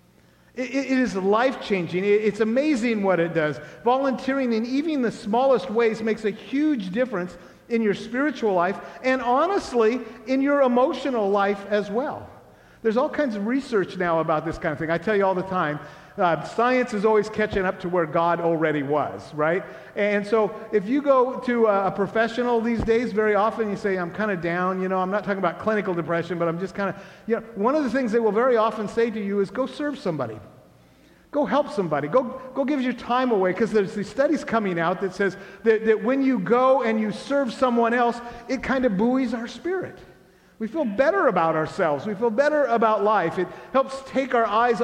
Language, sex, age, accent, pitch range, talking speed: English, male, 50-69, American, 190-245 Hz, 205 wpm